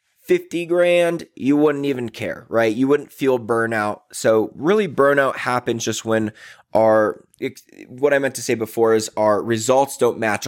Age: 20-39